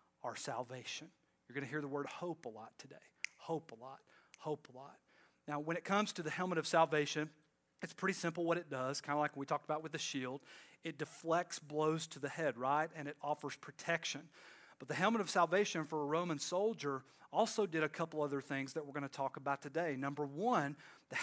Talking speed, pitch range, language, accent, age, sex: 220 wpm, 150-190 Hz, English, American, 40-59, male